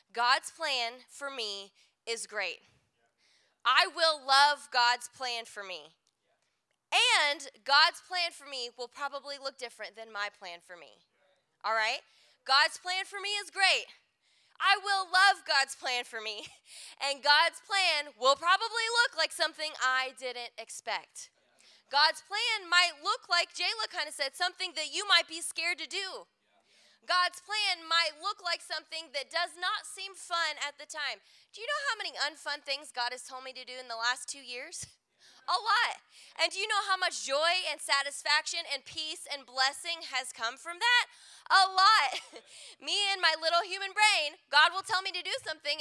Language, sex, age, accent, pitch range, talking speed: English, female, 20-39, American, 260-350 Hz, 180 wpm